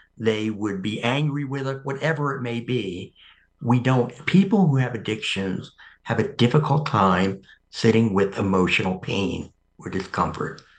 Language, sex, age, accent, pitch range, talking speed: English, male, 60-79, American, 110-145 Hz, 145 wpm